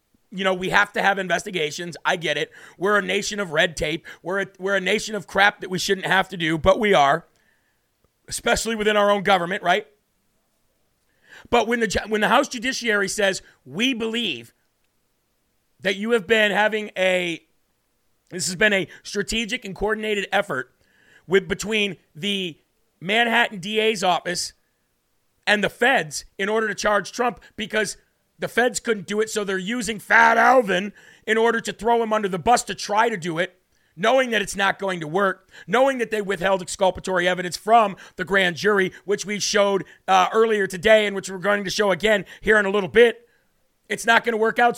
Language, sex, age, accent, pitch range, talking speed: English, male, 40-59, American, 190-225 Hz, 190 wpm